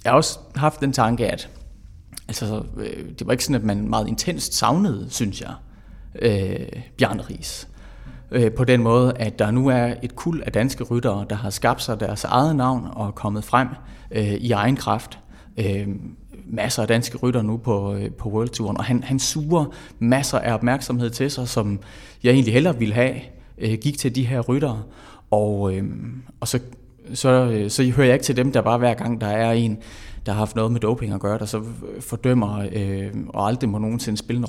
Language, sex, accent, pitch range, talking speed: Danish, male, native, 105-125 Hz, 205 wpm